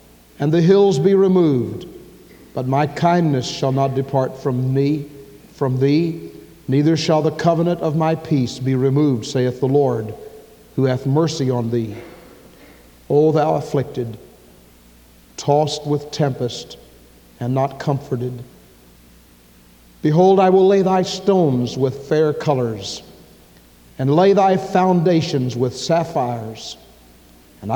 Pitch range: 115-165 Hz